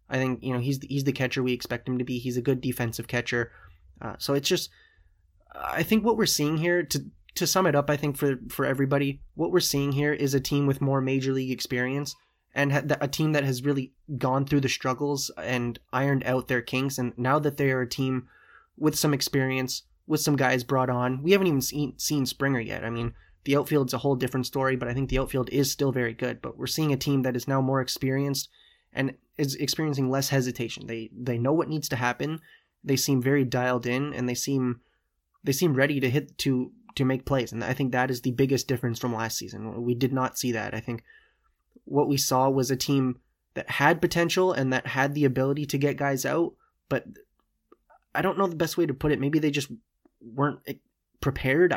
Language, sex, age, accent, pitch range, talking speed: English, male, 20-39, American, 125-145 Hz, 225 wpm